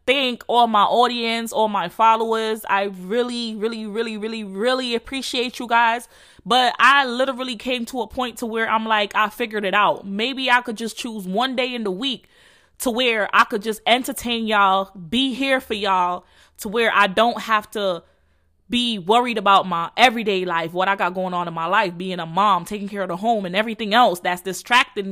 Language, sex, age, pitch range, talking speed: English, female, 20-39, 210-260 Hz, 205 wpm